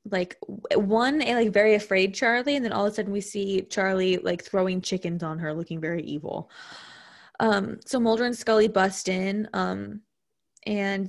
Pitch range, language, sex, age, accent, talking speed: 185-215 Hz, English, female, 20-39, American, 175 wpm